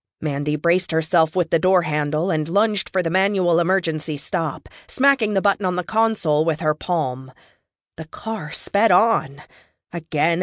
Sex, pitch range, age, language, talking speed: female, 155-215 Hz, 30-49, English, 160 wpm